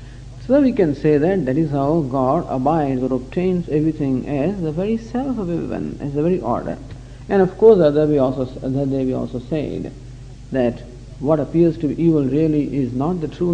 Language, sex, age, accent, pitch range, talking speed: English, male, 50-69, Indian, 130-195 Hz, 200 wpm